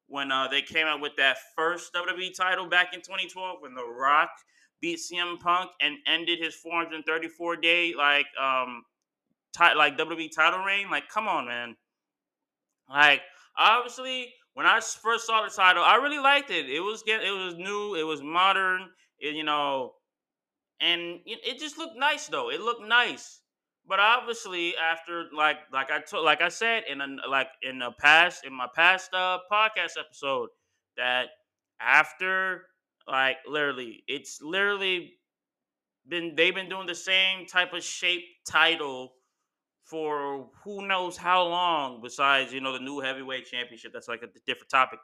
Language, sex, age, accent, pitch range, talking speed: English, male, 20-39, American, 150-205 Hz, 160 wpm